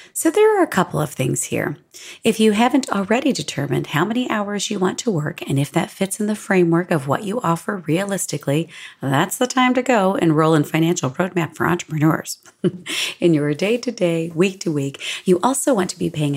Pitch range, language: 155-220 Hz, English